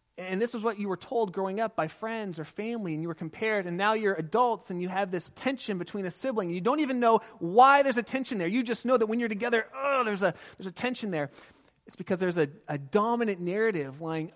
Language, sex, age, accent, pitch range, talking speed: English, male, 30-49, American, 155-215 Hz, 245 wpm